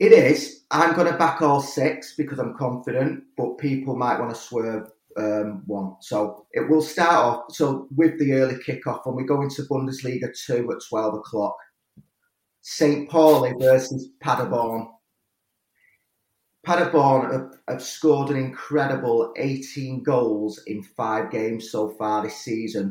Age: 30-49